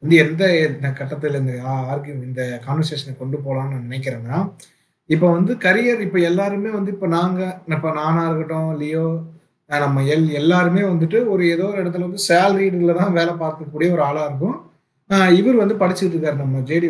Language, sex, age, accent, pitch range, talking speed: Tamil, male, 30-49, native, 150-185 Hz, 150 wpm